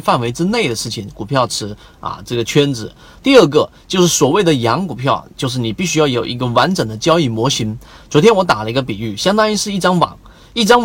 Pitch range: 120-160 Hz